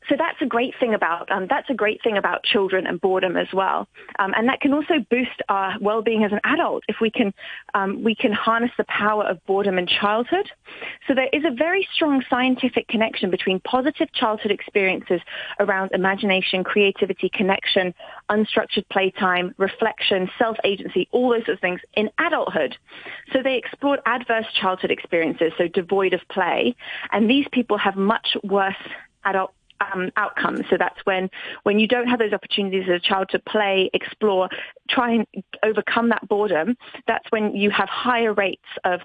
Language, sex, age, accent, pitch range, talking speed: English, female, 30-49, British, 195-240 Hz, 175 wpm